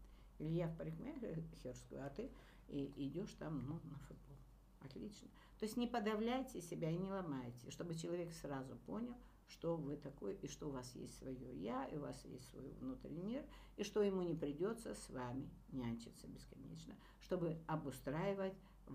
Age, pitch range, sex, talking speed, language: 60-79, 135-190 Hz, female, 160 wpm, Russian